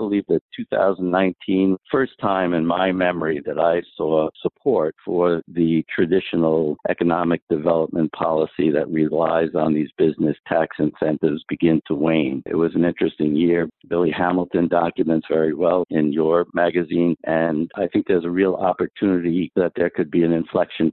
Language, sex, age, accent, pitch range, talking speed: English, male, 60-79, American, 80-95 Hz, 160 wpm